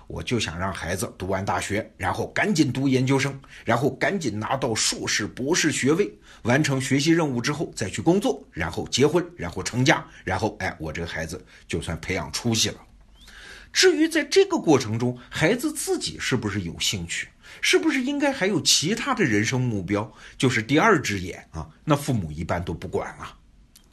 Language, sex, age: Chinese, male, 50-69